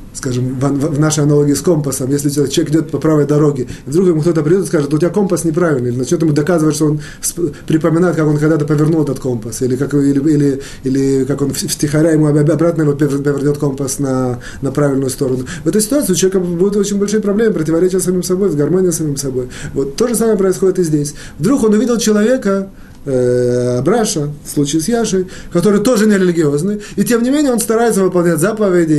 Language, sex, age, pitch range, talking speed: Russian, male, 30-49, 140-200 Hz, 195 wpm